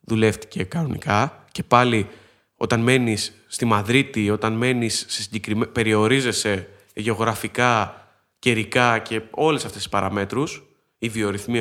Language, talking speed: Greek, 115 wpm